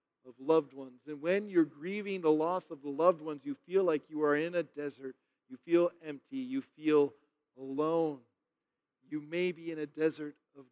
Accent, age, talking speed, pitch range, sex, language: American, 40-59, 190 wpm, 145-180 Hz, male, English